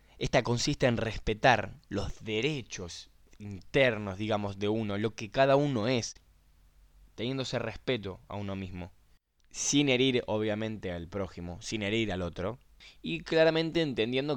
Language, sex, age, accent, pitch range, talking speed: Spanish, male, 10-29, Argentinian, 95-140 Hz, 135 wpm